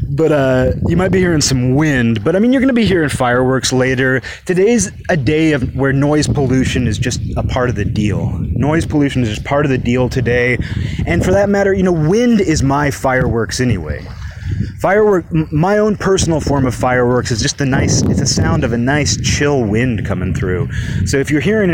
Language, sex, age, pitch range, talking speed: English, male, 30-49, 115-160 Hz, 210 wpm